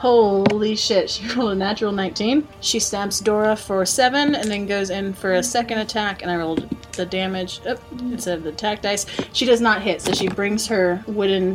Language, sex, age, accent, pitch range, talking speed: English, female, 30-49, American, 175-230 Hz, 205 wpm